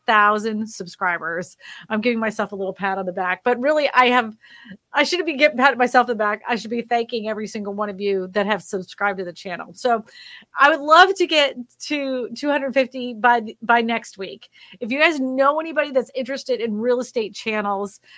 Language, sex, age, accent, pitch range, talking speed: English, female, 30-49, American, 220-275 Hz, 200 wpm